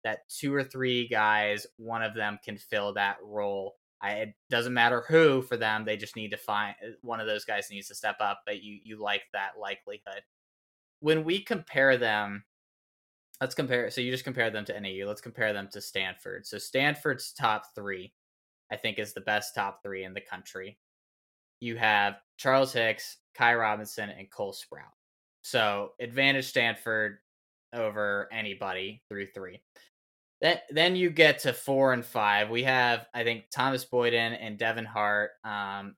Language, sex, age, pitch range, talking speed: English, male, 10-29, 105-120 Hz, 175 wpm